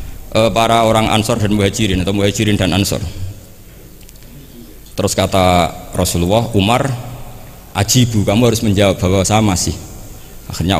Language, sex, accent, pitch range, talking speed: Indonesian, male, native, 100-140 Hz, 115 wpm